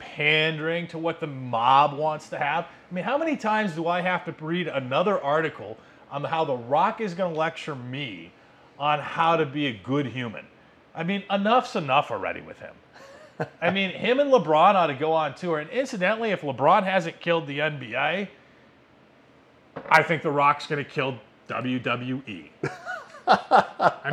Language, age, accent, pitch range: English, 30-49, American, 140-180 Hz